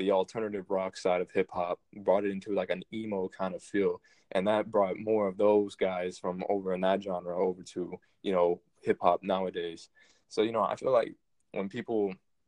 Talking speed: 195 wpm